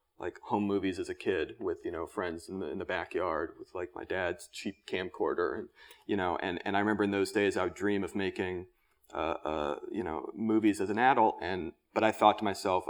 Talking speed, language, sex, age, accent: 235 wpm, English, male, 30-49, American